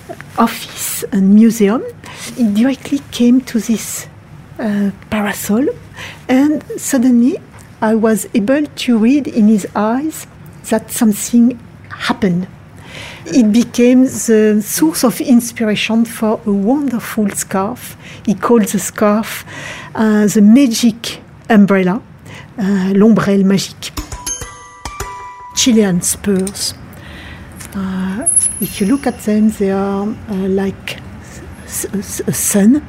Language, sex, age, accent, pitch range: Korean, female, 50-69, French, 195-235 Hz